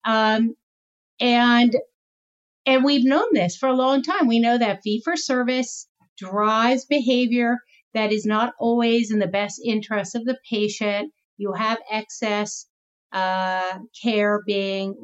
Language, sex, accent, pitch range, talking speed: English, female, American, 210-260 Hz, 140 wpm